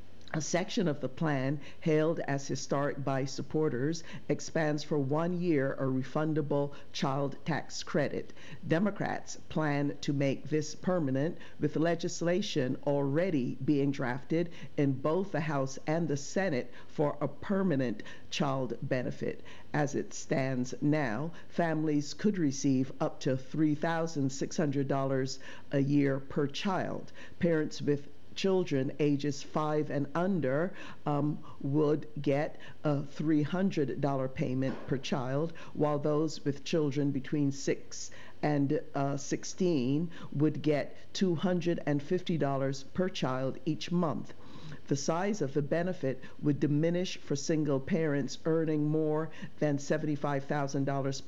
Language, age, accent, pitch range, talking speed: English, 50-69, American, 140-160 Hz, 120 wpm